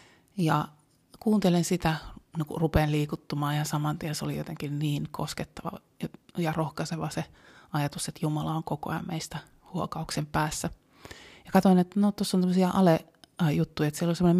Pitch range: 150-170 Hz